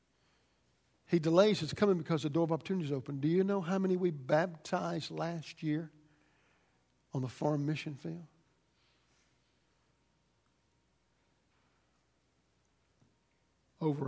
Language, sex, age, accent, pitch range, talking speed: English, male, 60-79, American, 135-165 Hz, 110 wpm